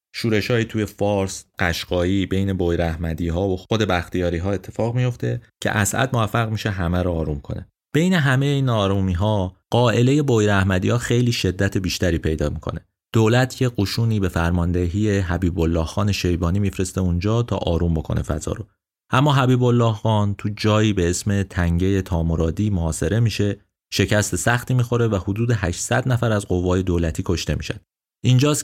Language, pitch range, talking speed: Persian, 85-110 Hz, 155 wpm